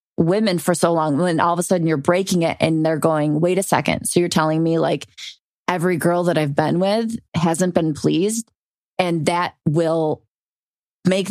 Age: 20-39